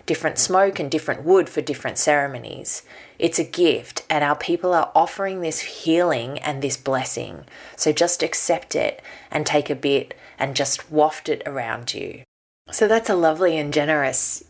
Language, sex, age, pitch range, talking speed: English, female, 20-39, 140-170 Hz, 170 wpm